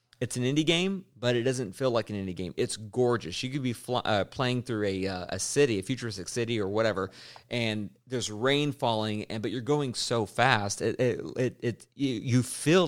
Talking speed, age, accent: 215 wpm, 40-59, American